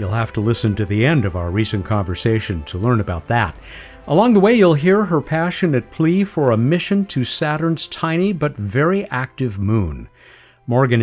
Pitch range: 110-165 Hz